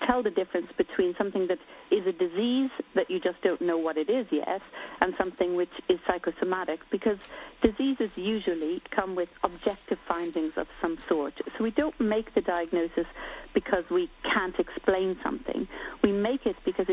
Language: English